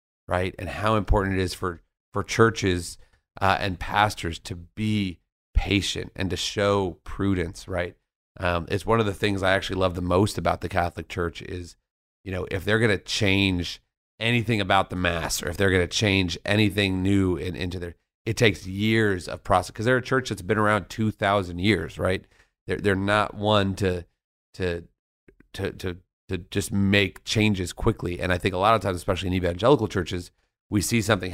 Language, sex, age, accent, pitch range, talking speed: English, male, 30-49, American, 90-105 Hz, 190 wpm